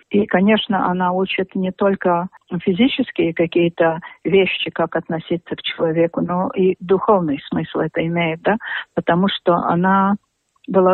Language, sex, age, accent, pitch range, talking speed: Russian, female, 50-69, native, 180-215 Hz, 130 wpm